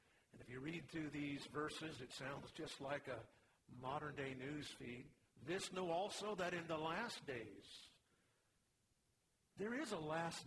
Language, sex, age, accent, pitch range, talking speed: English, male, 50-69, American, 135-170 Hz, 155 wpm